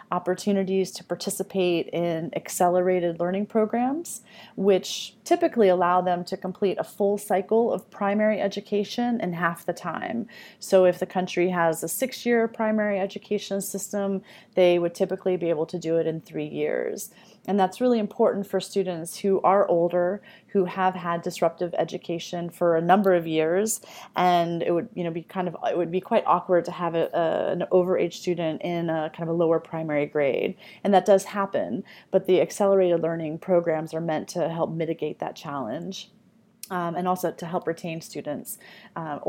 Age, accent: 30-49, American